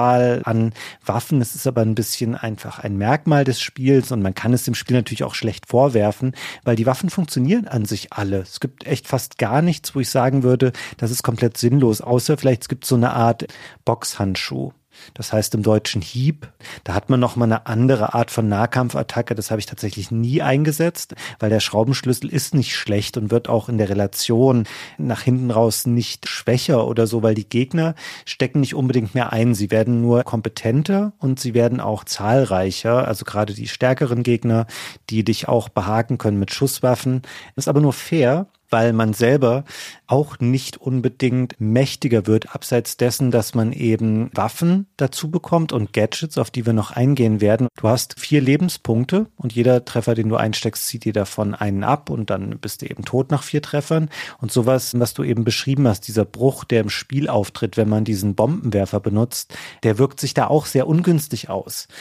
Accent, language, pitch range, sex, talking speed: German, German, 110-135 Hz, male, 190 wpm